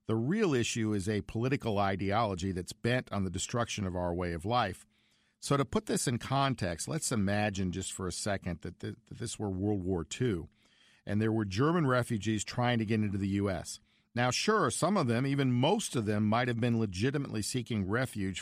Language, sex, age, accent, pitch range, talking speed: English, male, 50-69, American, 100-125 Hz, 200 wpm